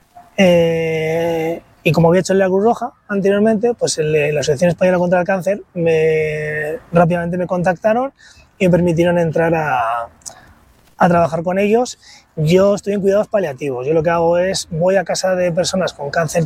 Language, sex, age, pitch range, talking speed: Spanish, male, 20-39, 160-195 Hz, 170 wpm